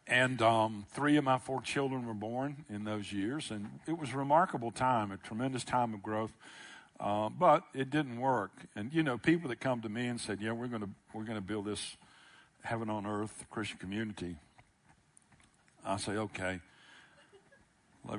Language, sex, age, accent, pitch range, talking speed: English, male, 60-79, American, 105-145 Hz, 180 wpm